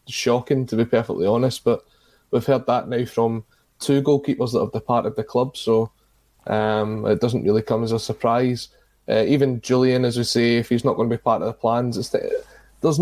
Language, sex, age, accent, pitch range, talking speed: English, male, 20-39, British, 115-130 Hz, 205 wpm